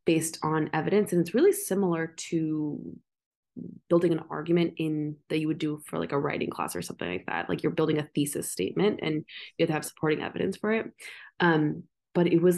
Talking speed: 205 wpm